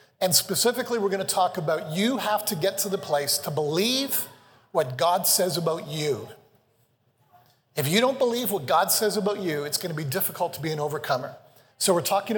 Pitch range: 145-195 Hz